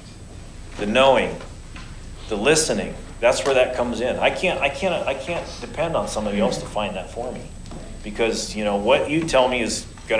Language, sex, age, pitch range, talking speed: English, male, 40-59, 100-120 Hz, 195 wpm